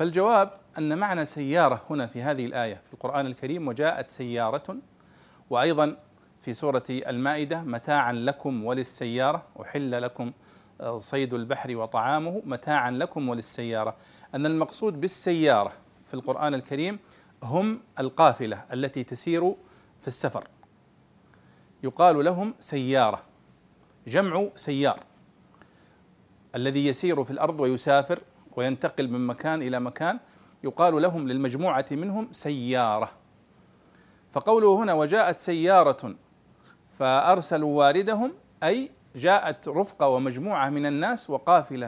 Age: 40-59